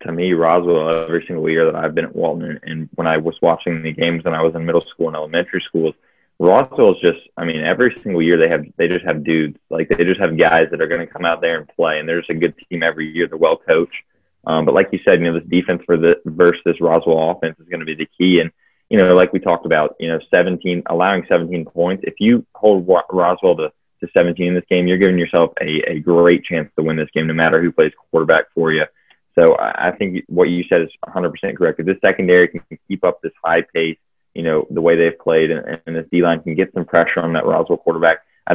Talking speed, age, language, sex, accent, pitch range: 255 wpm, 20-39, English, male, American, 80-90 Hz